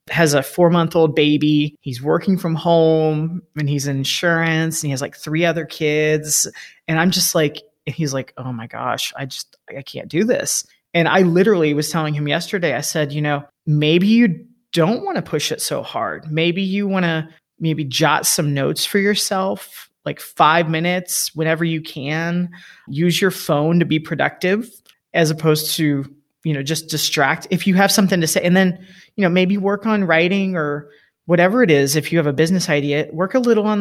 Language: English